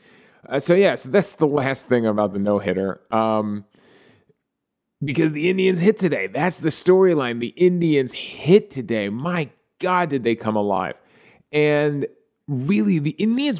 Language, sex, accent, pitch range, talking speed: English, male, American, 110-165 Hz, 155 wpm